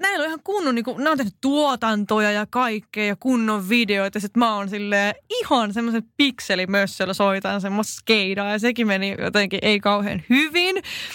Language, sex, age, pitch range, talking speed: Finnish, female, 20-39, 205-280 Hz, 145 wpm